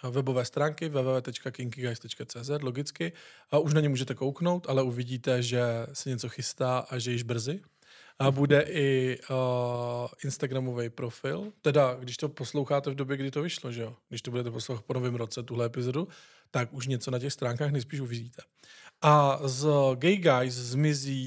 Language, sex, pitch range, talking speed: Czech, male, 125-140 Hz, 165 wpm